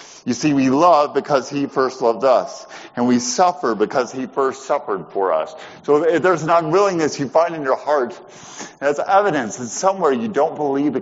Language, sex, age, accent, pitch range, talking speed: English, male, 50-69, American, 130-180 Hz, 200 wpm